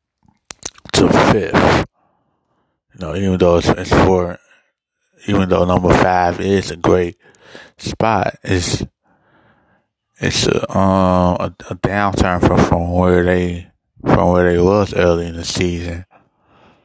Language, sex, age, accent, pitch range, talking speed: English, male, 20-39, American, 90-95 Hz, 130 wpm